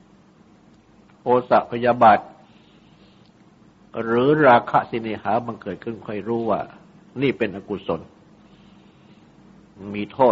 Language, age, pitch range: Thai, 60-79, 105-120 Hz